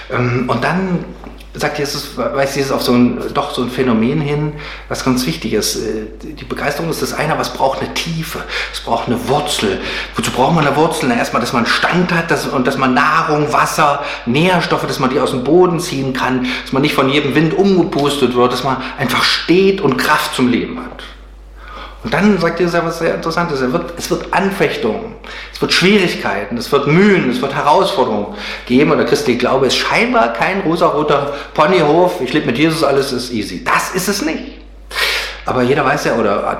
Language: German